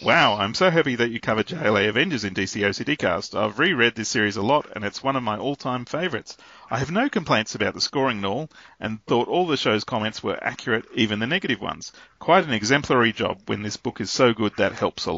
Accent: Australian